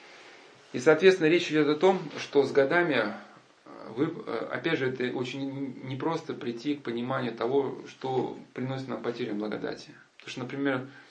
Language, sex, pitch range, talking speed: Russian, male, 125-150 Hz, 145 wpm